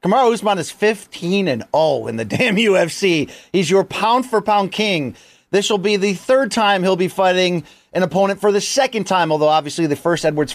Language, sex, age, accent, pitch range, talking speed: English, male, 30-49, American, 155-220 Hz, 200 wpm